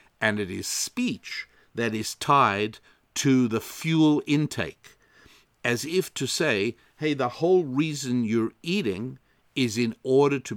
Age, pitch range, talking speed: 60-79, 105-145 Hz, 140 wpm